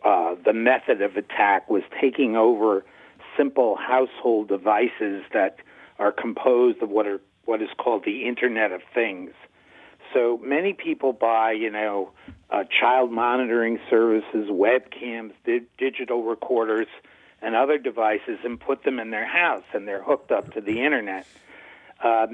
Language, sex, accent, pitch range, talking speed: English, male, American, 110-135 Hz, 150 wpm